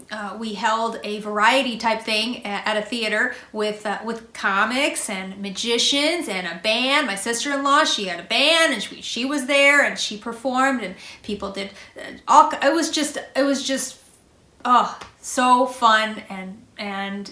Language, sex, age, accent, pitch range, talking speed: English, female, 30-49, American, 200-250 Hz, 175 wpm